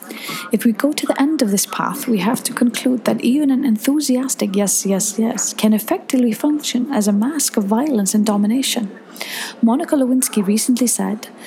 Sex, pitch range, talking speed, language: female, 205-250 Hz, 165 wpm, English